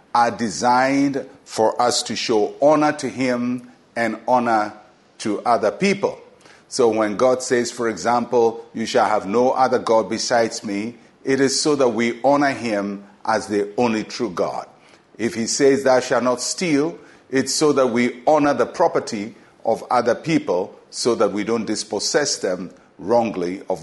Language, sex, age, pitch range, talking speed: English, male, 50-69, 115-150 Hz, 165 wpm